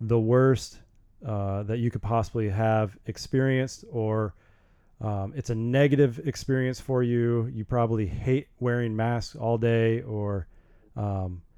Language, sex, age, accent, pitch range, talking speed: English, male, 30-49, American, 110-135 Hz, 135 wpm